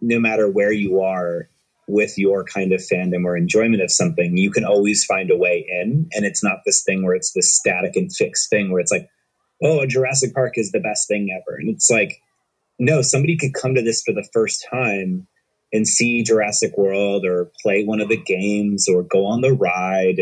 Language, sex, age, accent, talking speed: English, male, 30-49, American, 215 wpm